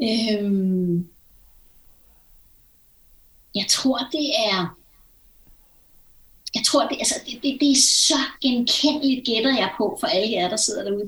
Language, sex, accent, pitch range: Danish, female, native, 205-275 Hz